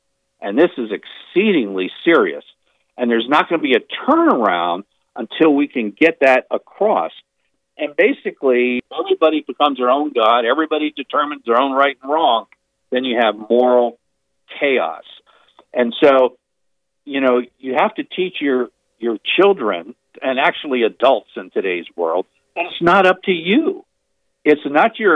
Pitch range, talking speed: 120-180 Hz, 150 wpm